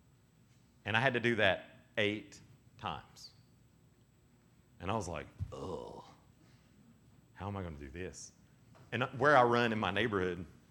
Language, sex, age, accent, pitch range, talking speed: English, male, 40-59, American, 95-120 Hz, 145 wpm